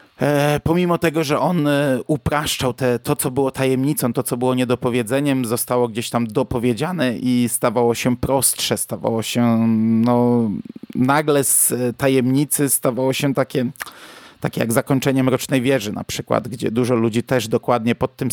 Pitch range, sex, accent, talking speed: 115-135 Hz, male, native, 145 wpm